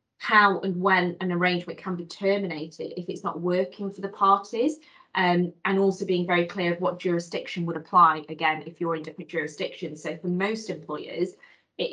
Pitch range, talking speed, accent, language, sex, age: 165-185 Hz, 185 wpm, British, English, female, 20-39